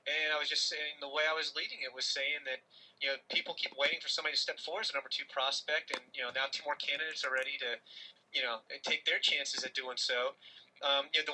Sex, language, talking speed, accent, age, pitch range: male, English, 270 wpm, American, 30-49, 145-175 Hz